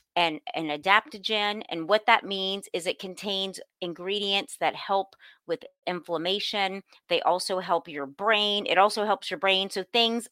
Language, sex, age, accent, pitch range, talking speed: English, female, 30-49, American, 185-235 Hz, 155 wpm